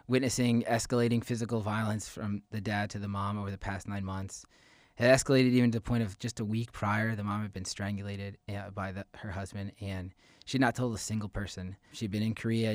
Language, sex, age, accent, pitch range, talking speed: English, male, 20-39, American, 100-120 Hz, 220 wpm